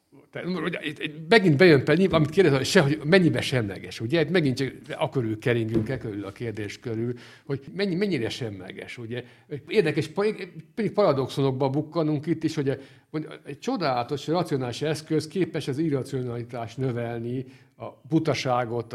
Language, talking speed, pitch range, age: Hungarian, 125 wpm, 120-160 Hz, 50-69